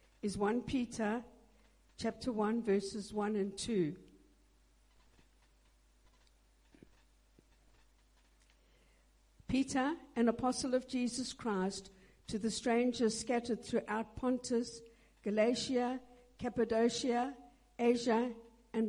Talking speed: 75 wpm